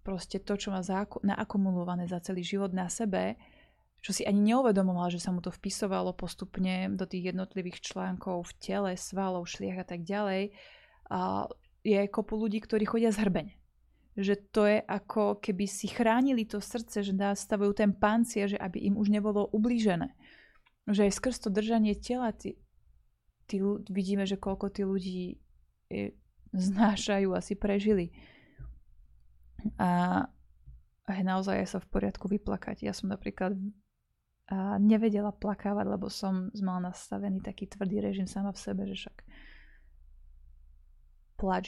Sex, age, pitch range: female, 20-39, 185-205 Hz